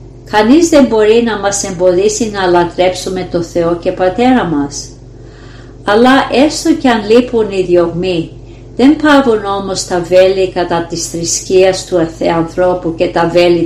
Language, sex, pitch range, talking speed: Greek, female, 165-215 Hz, 145 wpm